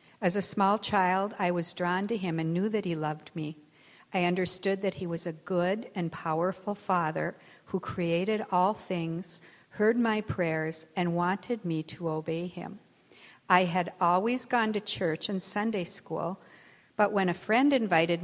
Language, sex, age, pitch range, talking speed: English, female, 60-79, 165-200 Hz, 170 wpm